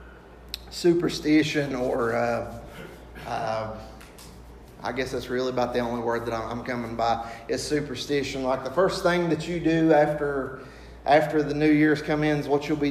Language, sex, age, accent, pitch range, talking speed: English, male, 30-49, American, 120-150 Hz, 165 wpm